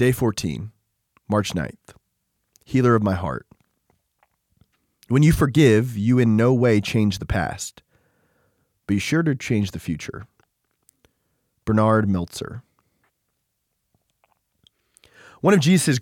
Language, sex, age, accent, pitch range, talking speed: English, male, 20-39, American, 105-130 Hz, 110 wpm